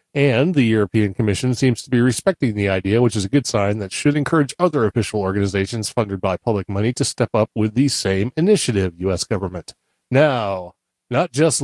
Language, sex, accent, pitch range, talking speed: English, male, American, 110-140 Hz, 190 wpm